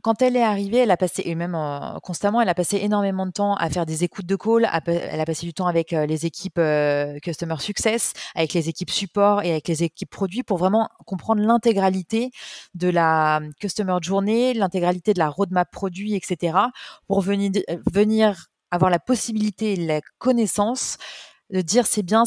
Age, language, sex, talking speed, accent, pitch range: 30-49, French, female, 190 wpm, French, 175-210 Hz